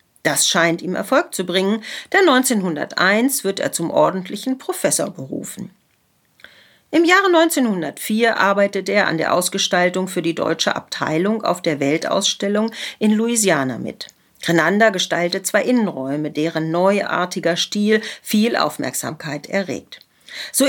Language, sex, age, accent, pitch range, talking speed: German, female, 50-69, German, 175-245 Hz, 125 wpm